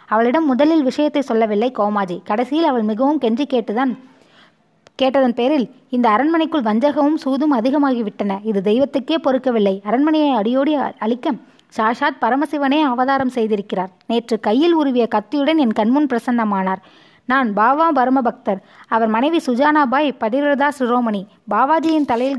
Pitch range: 225-285 Hz